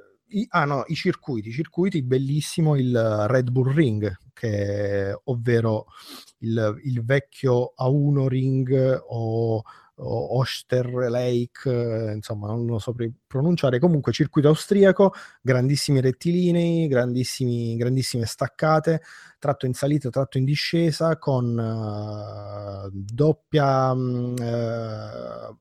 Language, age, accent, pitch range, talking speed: Italian, 30-49, native, 110-135 Hz, 100 wpm